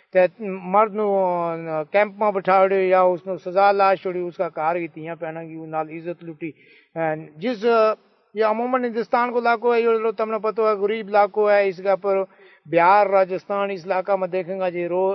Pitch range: 180-215 Hz